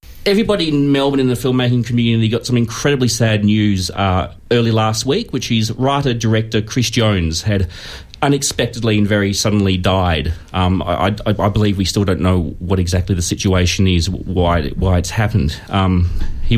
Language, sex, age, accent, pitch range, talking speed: English, male, 30-49, Australian, 100-135 Hz, 170 wpm